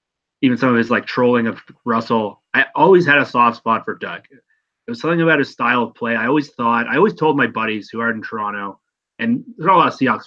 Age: 30-49